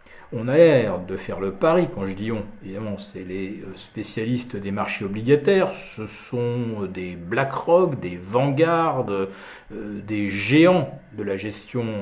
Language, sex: French, male